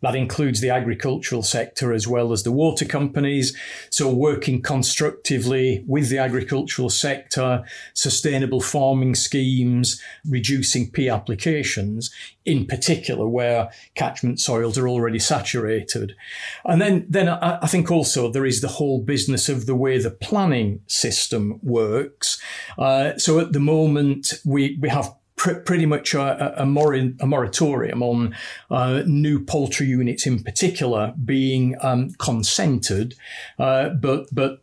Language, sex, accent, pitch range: English, male, British, 125-145 Hz